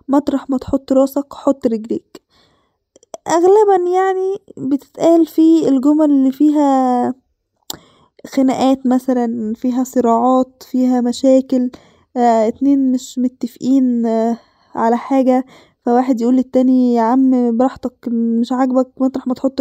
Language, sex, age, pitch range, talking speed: Arabic, female, 10-29, 235-275 Hz, 115 wpm